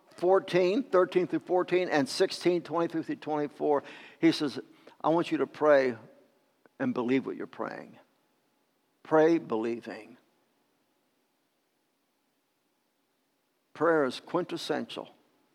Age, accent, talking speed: 60-79, American, 100 wpm